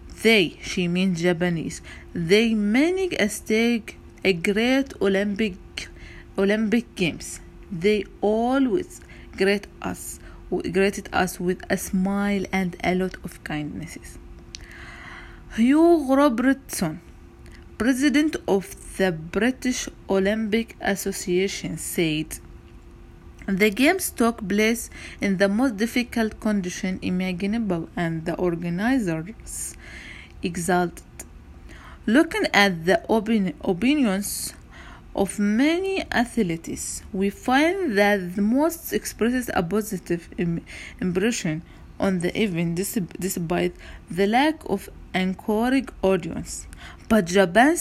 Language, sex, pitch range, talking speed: English, female, 180-225 Hz, 100 wpm